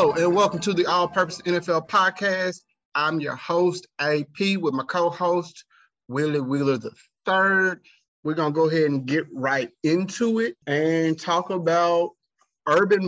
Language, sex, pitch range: English, male, 115-155 Hz